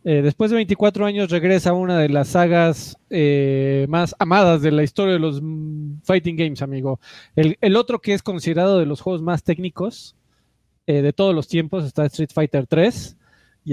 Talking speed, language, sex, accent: 185 wpm, Spanish, male, Mexican